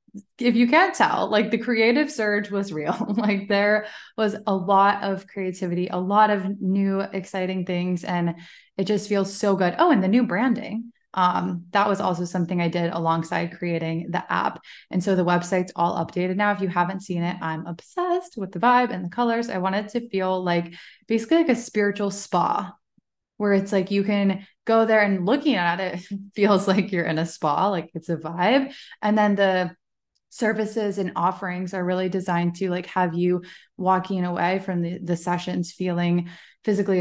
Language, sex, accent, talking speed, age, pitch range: English, female, American, 195 wpm, 20-39, 175-205 Hz